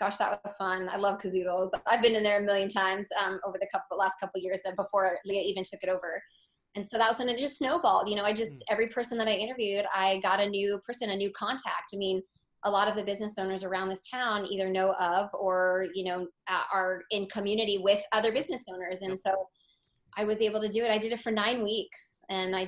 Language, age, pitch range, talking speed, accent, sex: English, 20-39, 185-225 Hz, 245 wpm, American, female